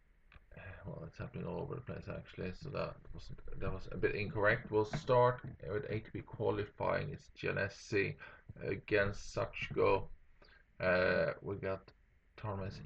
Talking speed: 135 wpm